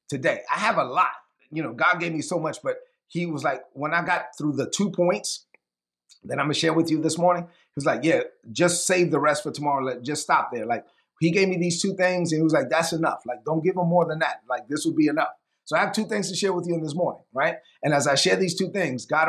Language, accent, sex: English, American, male